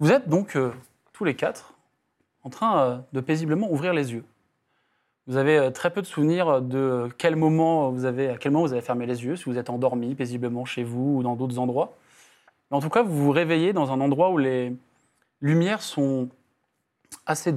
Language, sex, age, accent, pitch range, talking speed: French, male, 20-39, French, 130-165 Hz, 210 wpm